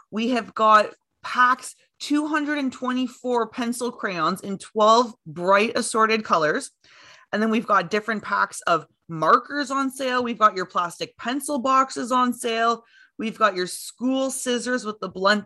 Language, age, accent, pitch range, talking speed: English, 20-39, American, 195-240 Hz, 150 wpm